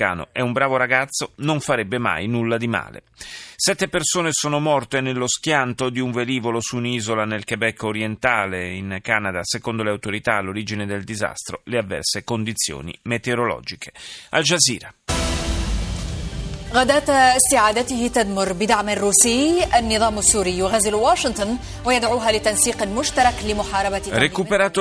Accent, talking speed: native, 95 wpm